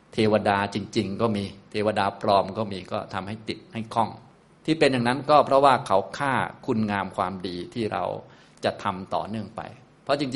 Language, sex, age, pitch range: Thai, male, 20-39, 100-130 Hz